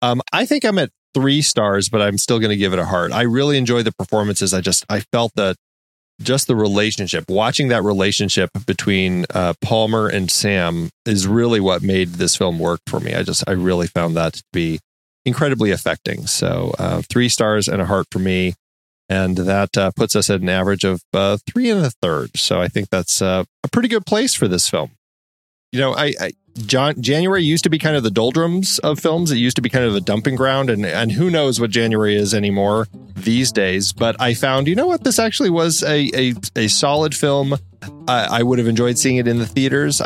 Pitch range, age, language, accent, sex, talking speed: 95-130 Hz, 30-49, English, American, male, 225 wpm